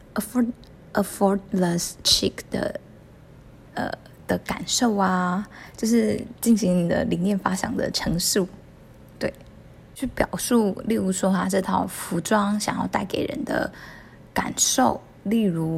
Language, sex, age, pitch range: Chinese, female, 20-39, 185-220 Hz